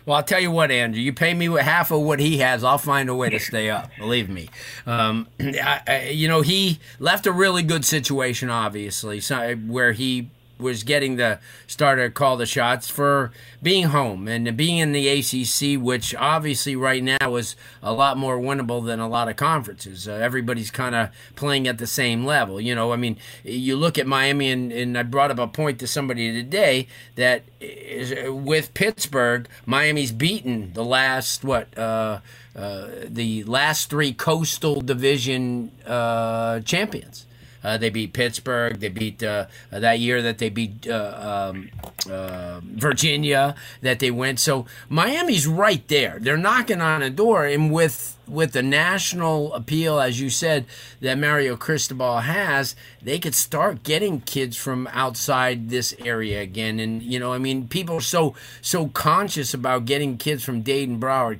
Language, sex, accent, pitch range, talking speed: English, male, American, 120-145 Hz, 175 wpm